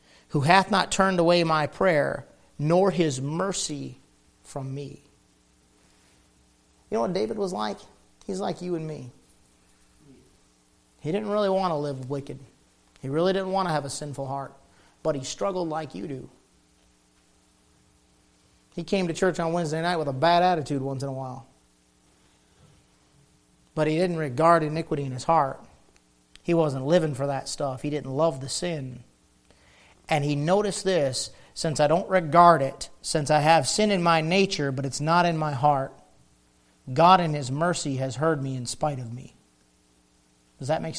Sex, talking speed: male, 170 wpm